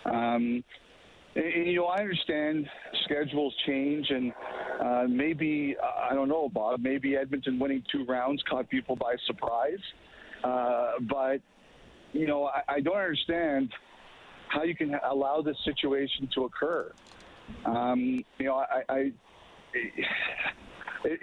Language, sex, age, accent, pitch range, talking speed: English, male, 50-69, American, 130-155 Hz, 135 wpm